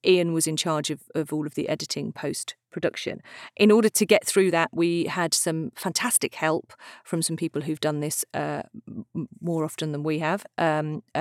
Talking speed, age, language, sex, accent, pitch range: 185 wpm, 40-59, English, female, British, 155-185 Hz